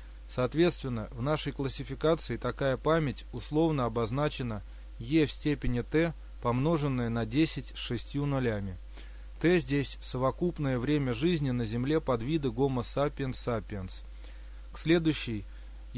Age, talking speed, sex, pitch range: 20-39, 115 wpm, male, 115-150 Hz